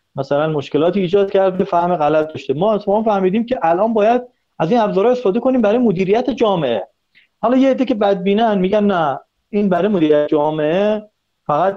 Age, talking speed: 40-59, 170 wpm